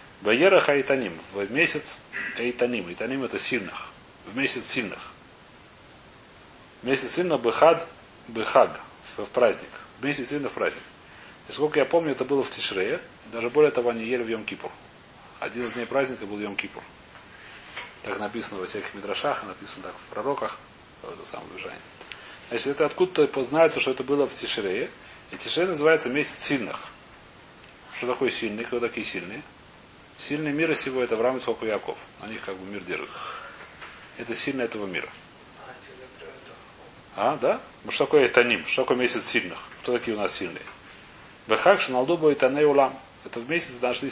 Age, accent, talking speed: 30-49, native, 150 wpm